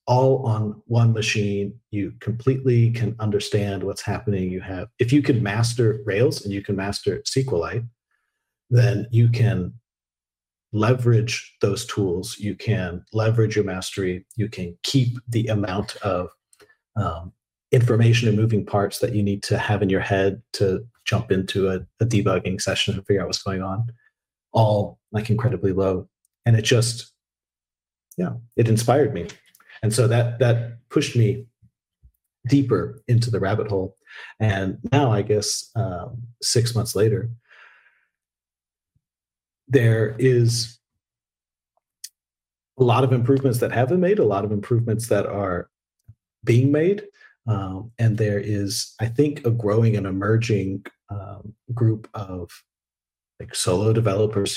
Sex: male